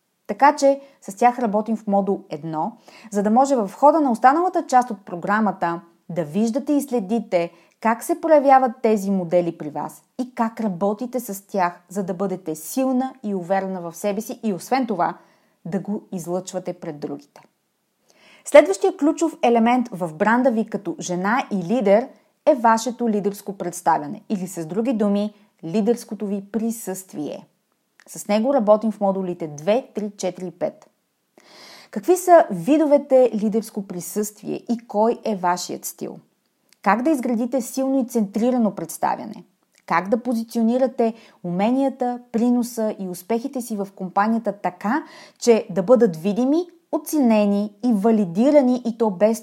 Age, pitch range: 30-49, 190-250 Hz